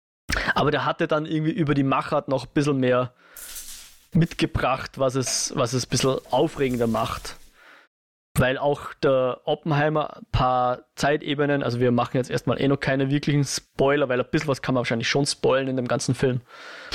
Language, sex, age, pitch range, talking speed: German, male, 20-39, 125-150 Hz, 180 wpm